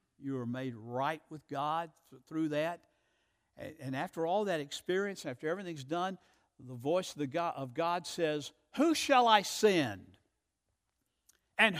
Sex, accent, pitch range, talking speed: male, American, 165-240 Hz, 150 wpm